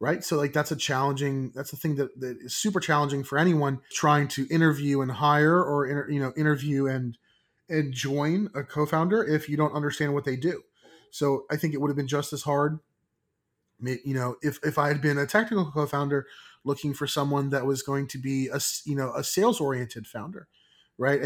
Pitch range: 135-150 Hz